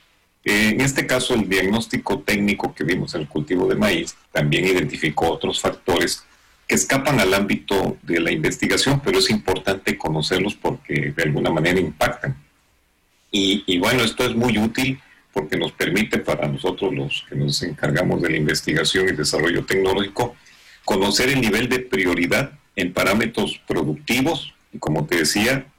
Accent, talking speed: Mexican, 155 wpm